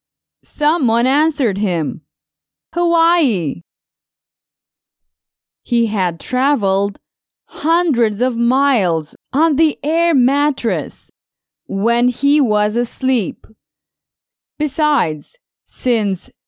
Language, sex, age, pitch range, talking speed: English, female, 20-39, 195-285 Hz, 75 wpm